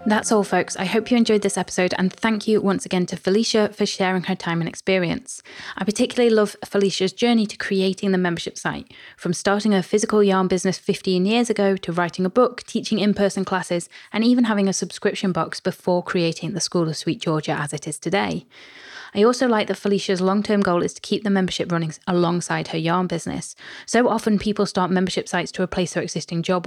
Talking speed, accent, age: 210 wpm, British, 20-39